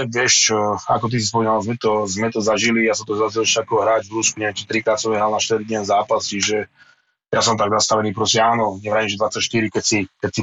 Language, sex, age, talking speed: Slovak, male, 20-39, 230 wpm